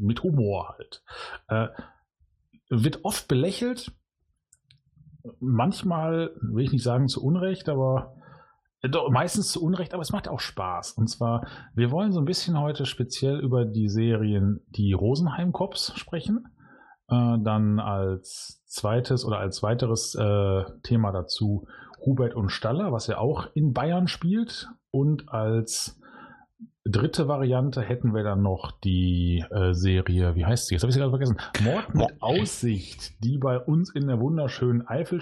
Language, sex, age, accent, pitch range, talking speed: German, male, 40-59, German, 100-135 Hz, 150 wpm